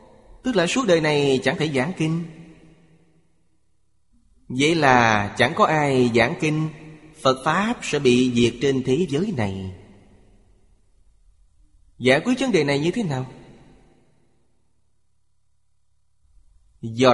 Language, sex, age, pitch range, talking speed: Vietnamese, male, 20-39, 110-145 Hz, 120 wpm